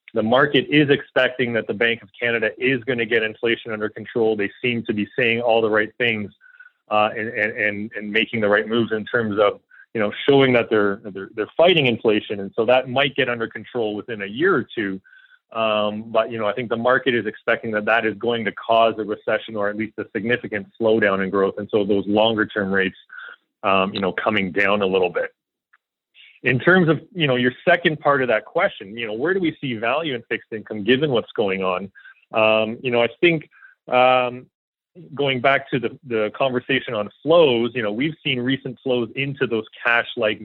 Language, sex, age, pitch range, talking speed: English, male, 30-49, 105-125 Hz, 215 wpm